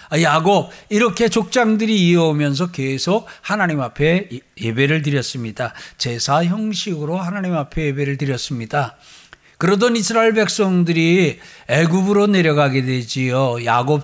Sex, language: male, Korean